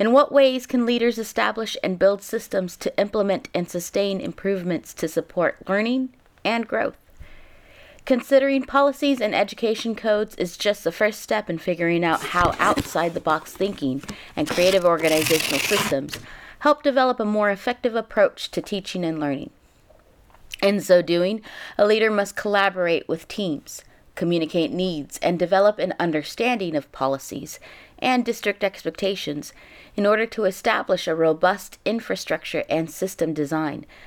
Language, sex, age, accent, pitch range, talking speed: English, female, 30-49, American, 170-230 Hz, 140 wpm